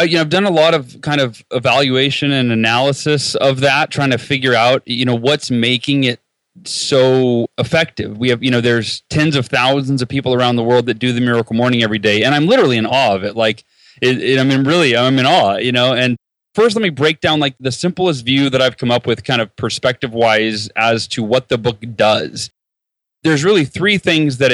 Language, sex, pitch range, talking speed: English, male, 120-140 Hz, 220 wpm